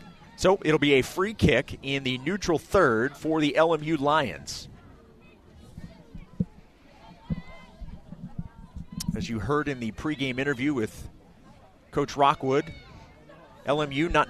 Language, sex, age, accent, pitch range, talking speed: English, male, 30-49, American, 140-180 Hz, 110 wpm